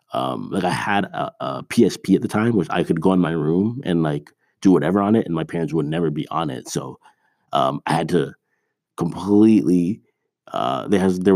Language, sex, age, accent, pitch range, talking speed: English, male, 30-49, American, 85-100 Hz, 215 wpm